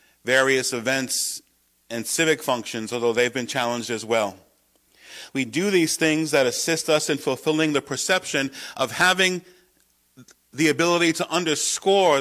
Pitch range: 120-155 Hz